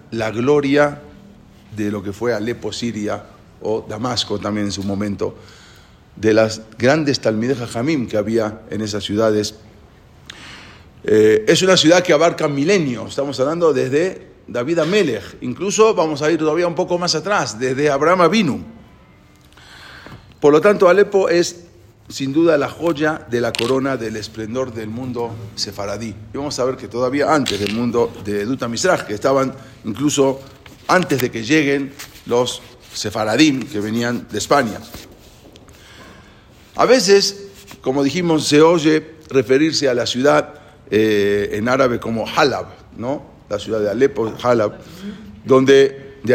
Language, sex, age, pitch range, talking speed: English, male, 40-59, 110-150 Hz, 150 wpm